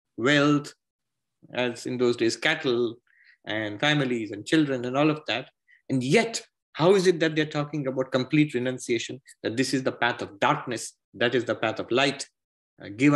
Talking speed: 180 wpm